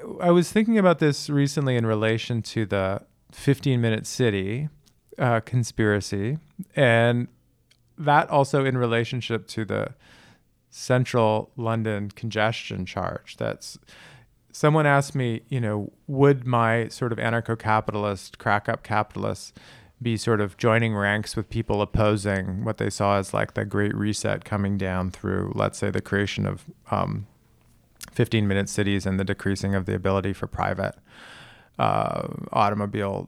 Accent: American